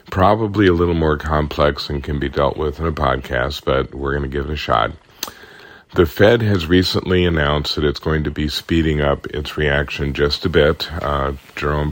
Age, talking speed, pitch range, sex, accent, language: 40-59, 200 wpm, 70-80 Hz, male, American, English